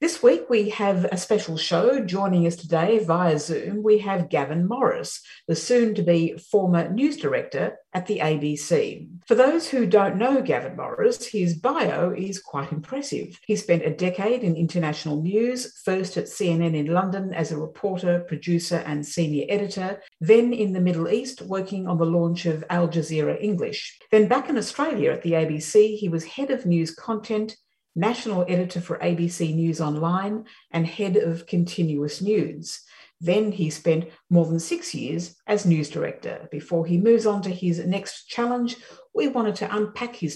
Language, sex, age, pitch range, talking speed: English, female, 50-69, 165-220 Hz, 170 wpm